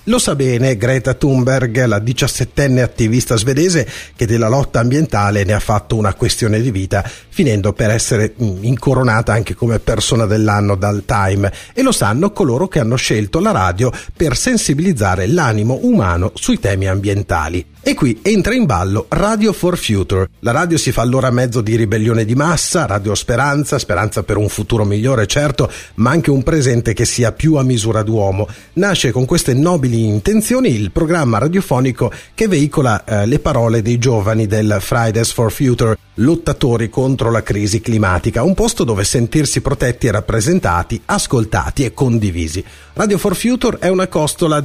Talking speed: 165 wpm